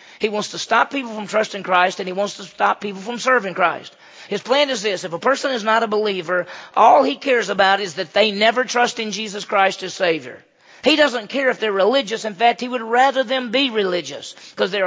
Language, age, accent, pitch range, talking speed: English, 40-59, American, 200-235 Hz, 235 wpm